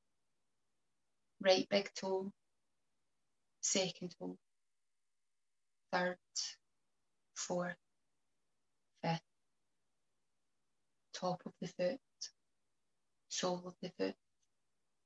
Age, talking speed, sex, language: 20-39, 65 wpm, female, English